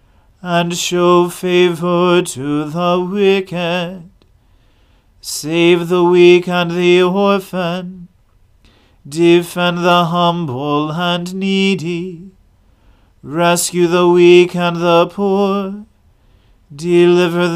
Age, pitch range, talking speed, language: 40-59, 170-180 Hz, 80 wpm, English